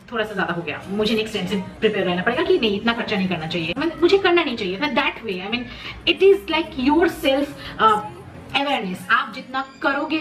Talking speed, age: 225 wpm, 30-49